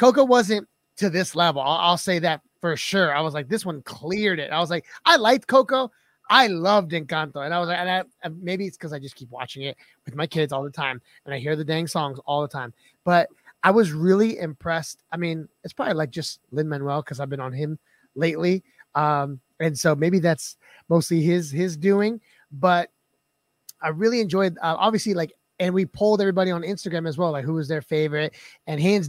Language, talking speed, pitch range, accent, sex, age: English, 220 wpm, 155-205 Hz, American, male, 30-49